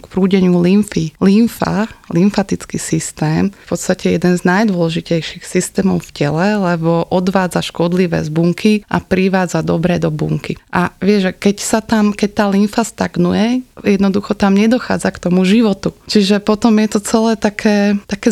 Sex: female